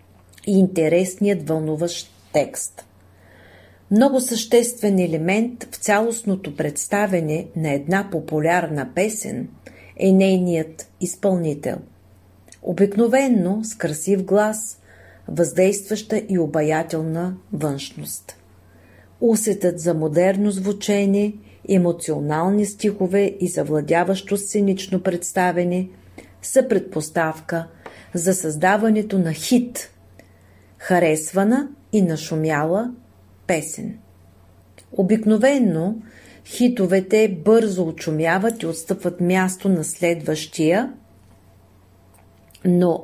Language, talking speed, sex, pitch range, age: Bulgarian, 75 wpm, female, 150-200 Hz, 40-59